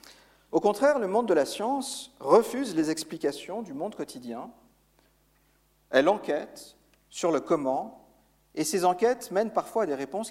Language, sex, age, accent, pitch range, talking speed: French, male, 50-69, French, 140-215 Hz, 150 wpm